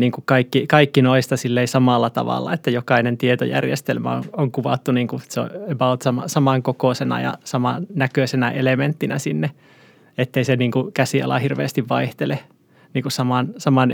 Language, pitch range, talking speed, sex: Finnish, 130-145 Hz, 120 wpm, male